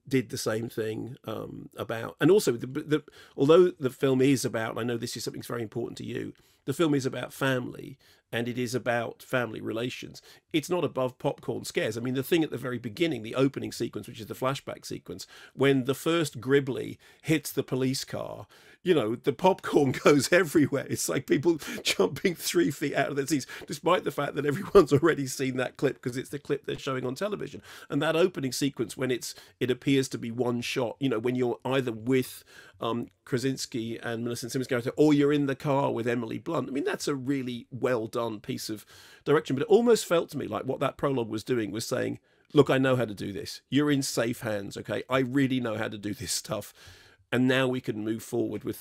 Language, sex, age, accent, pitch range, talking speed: English, male, 40-59, British, 120-145 Hz, 225 wpm